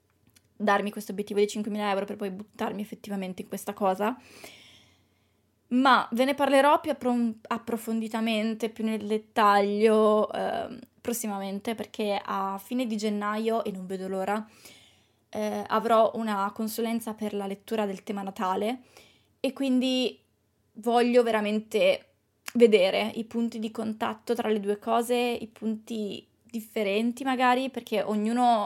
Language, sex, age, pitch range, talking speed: Italian, female, 20-39, 205-235 Hz, 130 wpm